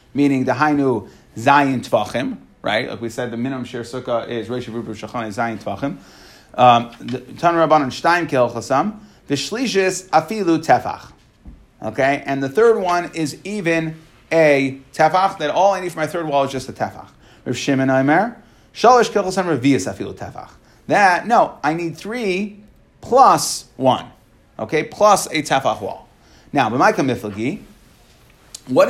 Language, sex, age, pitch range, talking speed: English, male, 30-49, 125-165 Hz, 150 wpm